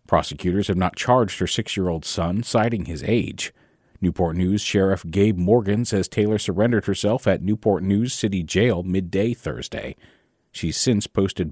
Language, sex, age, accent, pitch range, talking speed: English, male, 40-59, American, 90-120 Hz, 150 wpm